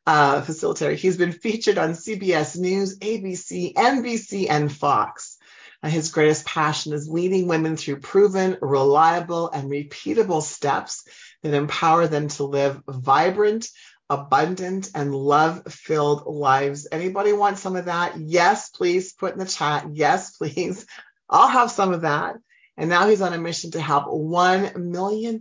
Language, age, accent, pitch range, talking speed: English, 40-59, American, 145-180 Hz, 150 wpm